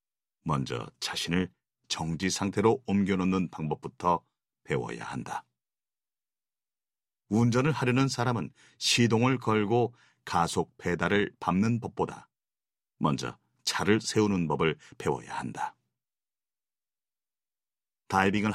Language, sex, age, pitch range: Korean, male, 40-59, 85-115 Hz